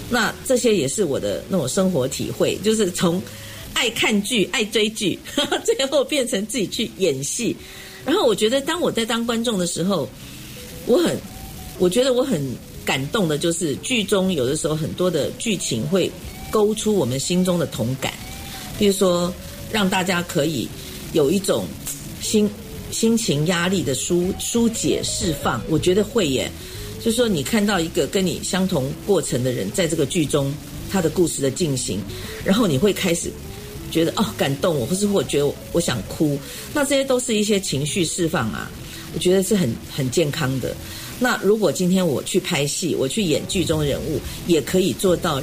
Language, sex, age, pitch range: Chinese, female, 50-69, 150-205 Hz